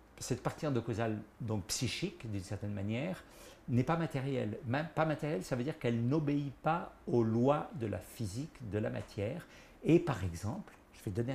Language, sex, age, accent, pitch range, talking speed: French, male, 50-69, French, 110-160 Hz, 175 wpm